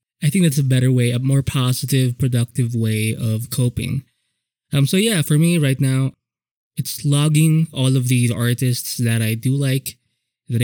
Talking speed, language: 175 wpm, English